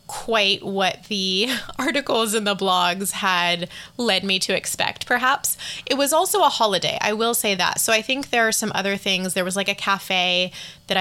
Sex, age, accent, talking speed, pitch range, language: female, 20-39, American, 195 wpm, 185-230 Hz, English